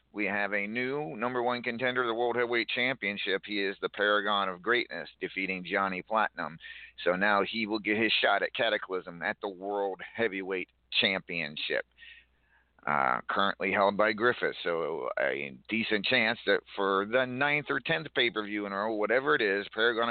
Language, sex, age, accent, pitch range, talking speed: English, male, 50-69, American, 95-125 Hz, 170 wpm